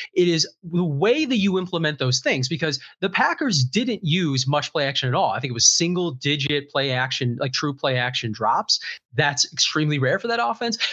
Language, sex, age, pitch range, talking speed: English, male, 30-49, 135-180 Hz, 210 wpm